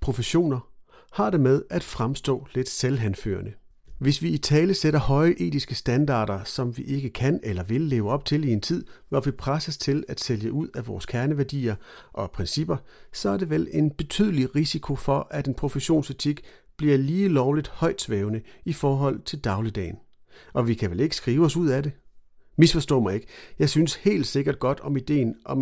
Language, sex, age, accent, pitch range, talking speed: Danish, male, 40-59, native, 115-150 Hz, 185 wpm